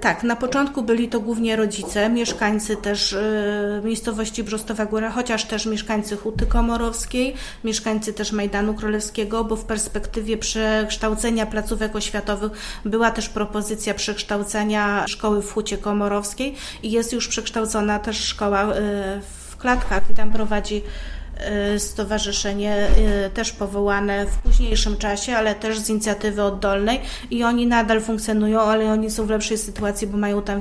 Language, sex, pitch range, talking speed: Polish, female, 210-230 Hz, 135 wpm